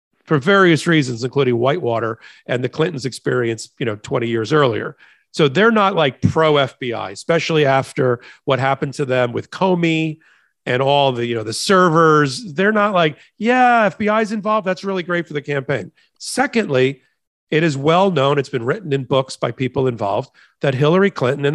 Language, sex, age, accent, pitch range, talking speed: English, male, 40-59, American, 130-175 Hz, 180 wpm